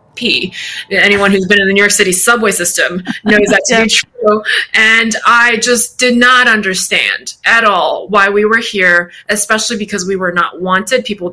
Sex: female